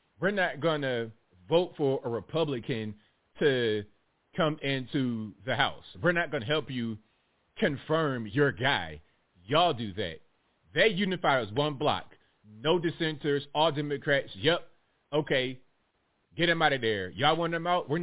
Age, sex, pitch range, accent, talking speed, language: 30-49, male, 125-155 Hz, American, 155 wpm, English